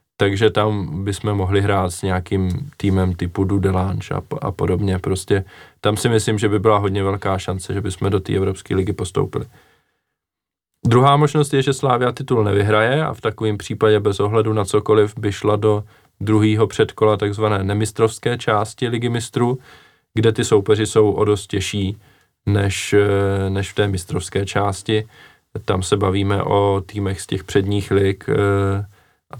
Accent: native